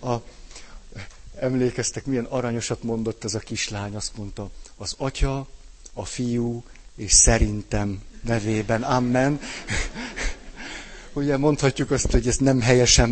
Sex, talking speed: male, 110 wpm